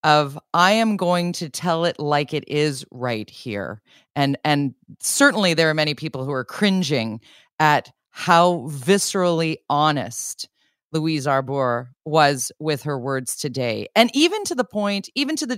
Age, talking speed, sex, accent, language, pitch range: 40-59, 160 wpm, female, American, English, 140-185 Hz